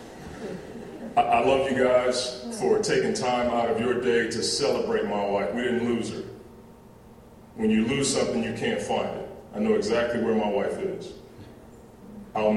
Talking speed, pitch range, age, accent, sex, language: 165 wpm, 110-135 Hz, 30-49, American, male, English